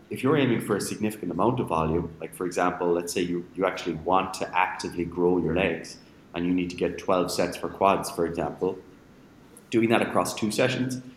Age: 30-49